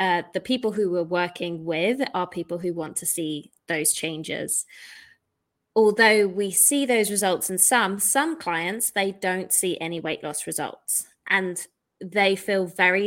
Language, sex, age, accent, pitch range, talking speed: English, female, 20-39, British, 175-205 Hz, 160 wpm